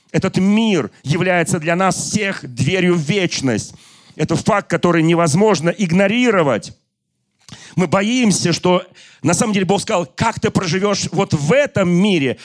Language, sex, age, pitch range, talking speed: Russian, male, 40-59, 125-185 Hz, 140 wpm